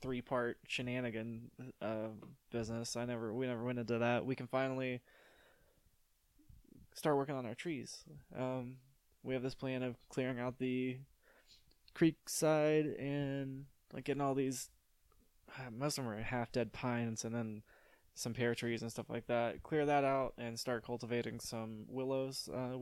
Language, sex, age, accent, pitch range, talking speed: English, male, 20-39, American, 115-130 Hz, 160 wpm